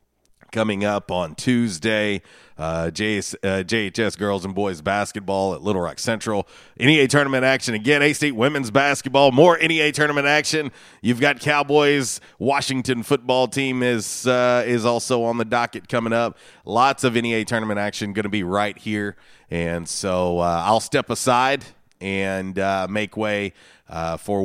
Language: English